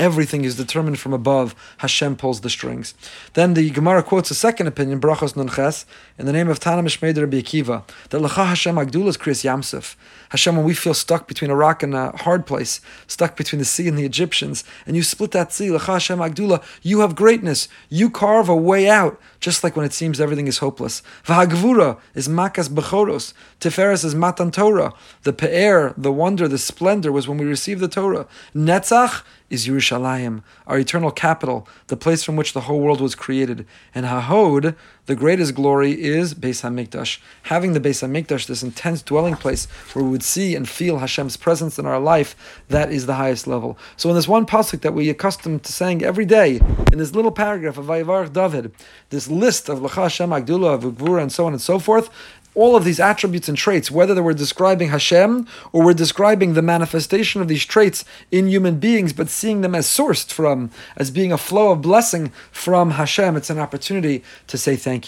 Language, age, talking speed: English, 30-49, 195 wpm